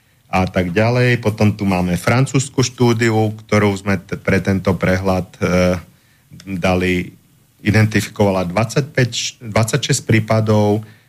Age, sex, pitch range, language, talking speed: 40-59, male, 100-115 Hz, Slovak, 110 wpm